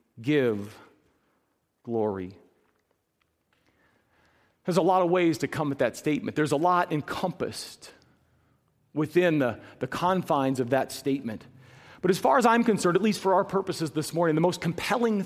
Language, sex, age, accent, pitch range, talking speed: English, male, 40-59, American, 165-265 Hz, 155 wpm